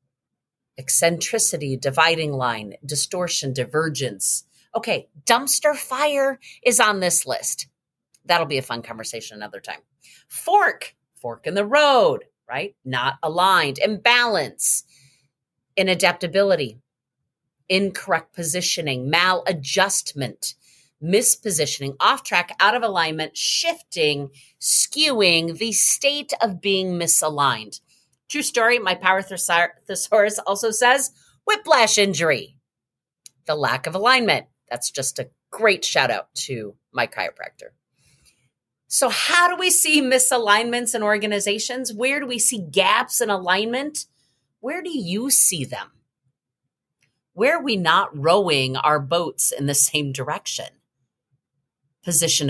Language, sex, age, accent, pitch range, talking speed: English, female, 40-59, American, 140-220 Hz, 115 wpm